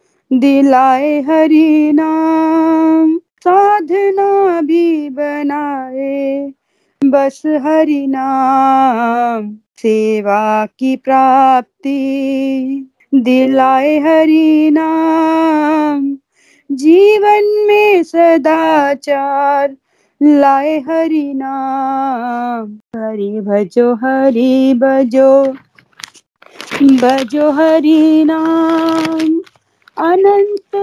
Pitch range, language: 270-325 Hz, Hindi